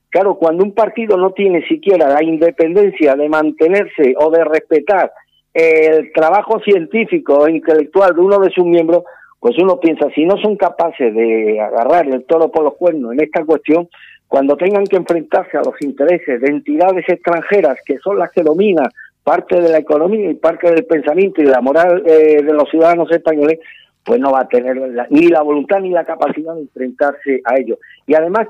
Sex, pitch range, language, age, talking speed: male, 150-180 Hz, Spanish, 50-69, 190 wpm